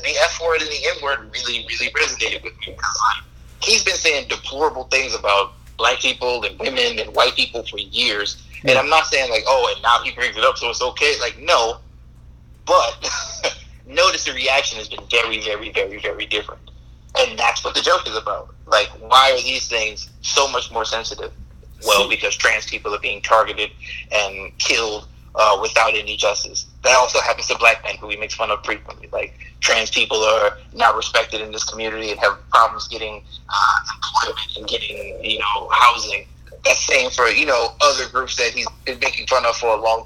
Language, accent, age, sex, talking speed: English, American, 30-49, male, 195 wpm